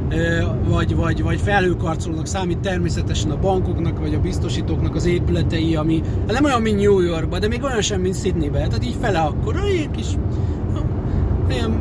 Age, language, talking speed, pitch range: 30-49, Hungarian, 170 wpm, 90-105 Hz